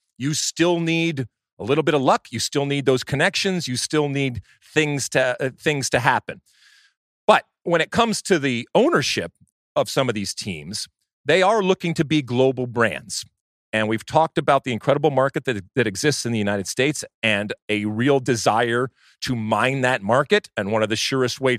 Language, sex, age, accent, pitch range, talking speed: English, male, 40-59, American, 115-155 Hz, 190 wpm